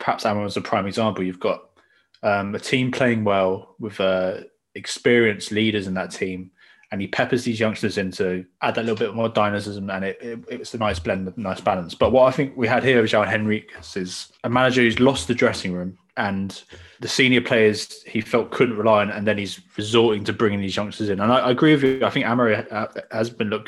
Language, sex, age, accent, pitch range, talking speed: English, male, 20-39, British, 100-125 Hz, 230 wpm